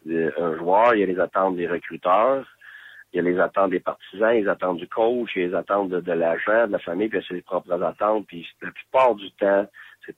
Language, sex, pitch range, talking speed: French, male, 85-110 Hz, 265 wpm